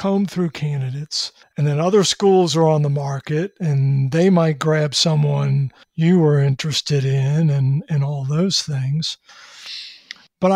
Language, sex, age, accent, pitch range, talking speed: English, male, 50-69, American, 150-180 Hz, 150 wpm